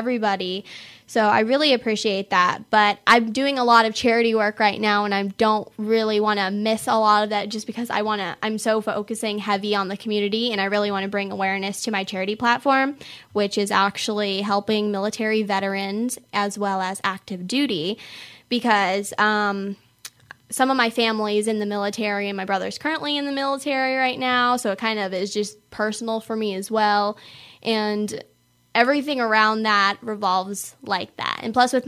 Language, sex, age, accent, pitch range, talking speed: English, female, 10-29, American, 200-235 Hz, 190 wpm